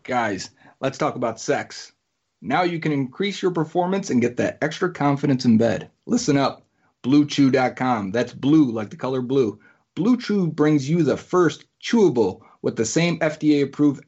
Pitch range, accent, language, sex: 120-150 Hz, American, English, male